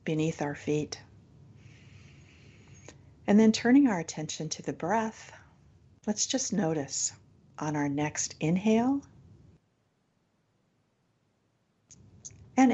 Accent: American